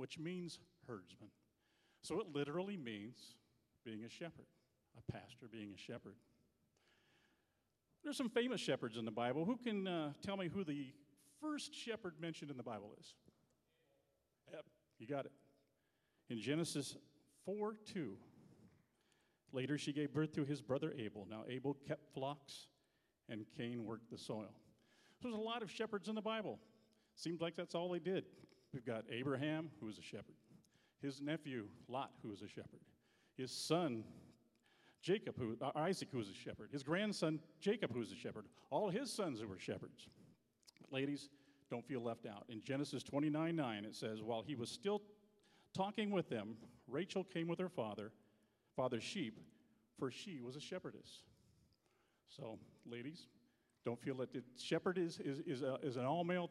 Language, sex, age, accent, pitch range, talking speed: English, male, 50-69, American, 120-170 Hz, 165 wpm